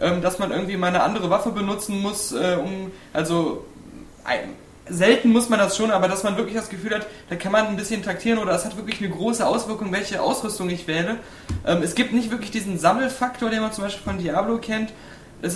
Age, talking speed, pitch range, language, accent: 20-39, 210 wpm, 185-220 Hz, German, German